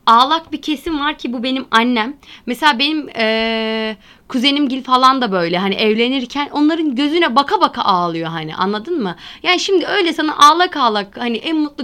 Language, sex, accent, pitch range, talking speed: Turkish, female, native, 225-300 Hz, 180 wpm